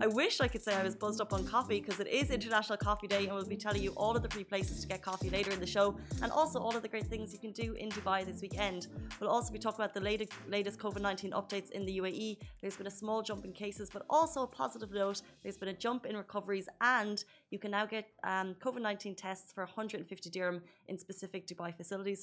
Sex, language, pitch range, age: female, Arabic, 190-215 Hz, 20-39